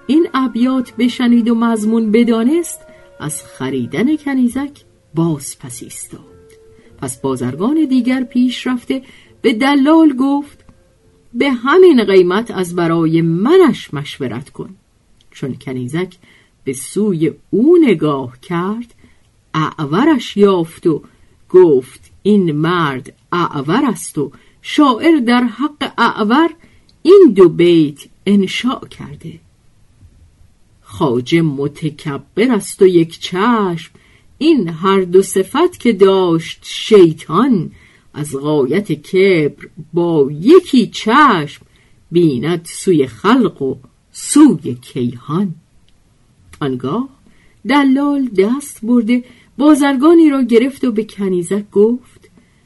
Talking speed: 100 wpm